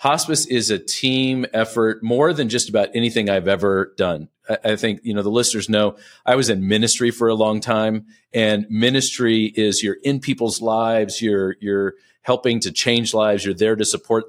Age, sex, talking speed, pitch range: 40-59, male, 195 wpm, 105-120 Hz